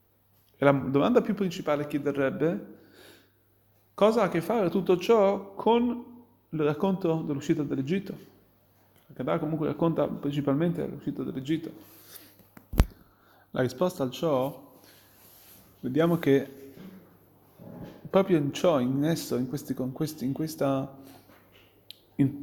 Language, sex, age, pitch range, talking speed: Italian, male, 30-49, 115-180 Hz, 115 wpm